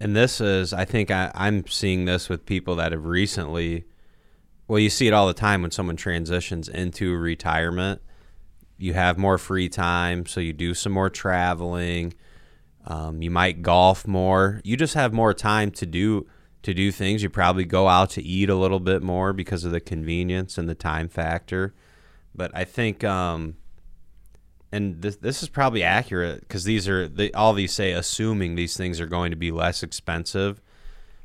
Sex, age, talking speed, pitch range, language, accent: male, 20-39, 185 wpm, 85-100 Hz, English, American